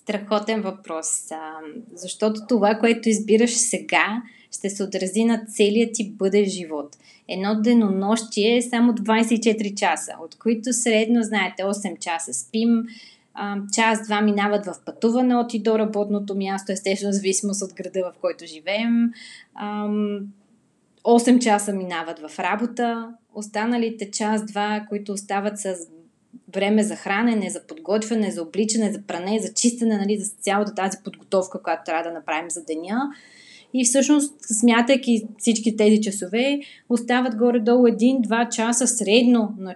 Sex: female